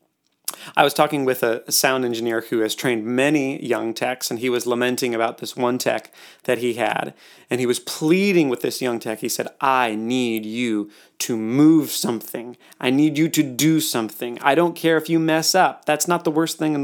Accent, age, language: American, 30-49, English